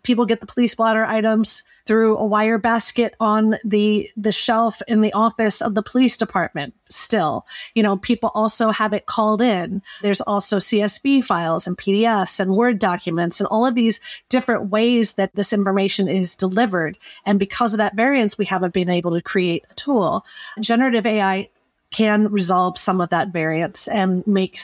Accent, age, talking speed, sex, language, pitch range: American, 30-49, 180 wpm, female, English, 190-225 Hz